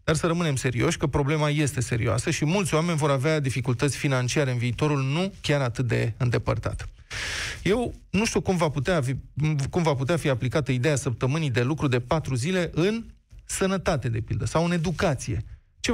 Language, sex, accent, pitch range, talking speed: Romanian, male, native, 125-175 Hz, 185 wpm